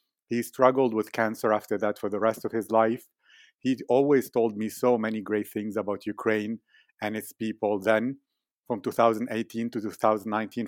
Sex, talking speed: male, 170 wpm